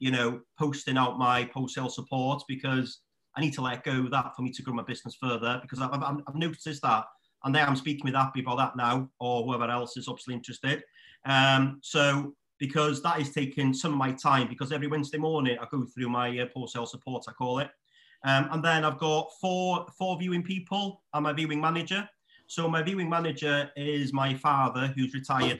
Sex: male